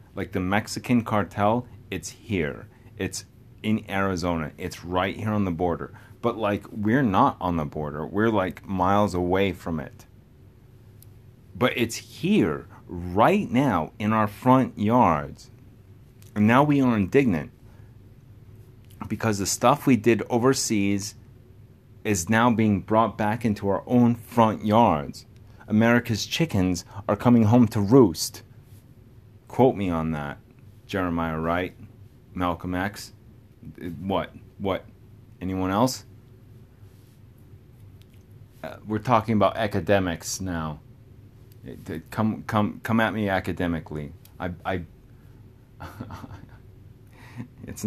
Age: 30-49